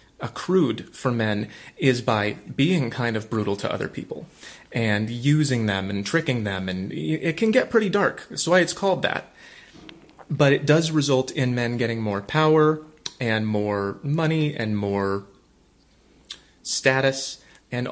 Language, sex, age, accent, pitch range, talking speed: English, male, 30-49, American, 120-150 Hz, 150 wpm